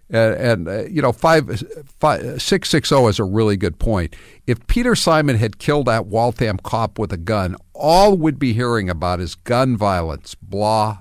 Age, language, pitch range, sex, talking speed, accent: 60-79, English, 95-150 Hz, male, 170 wpm, American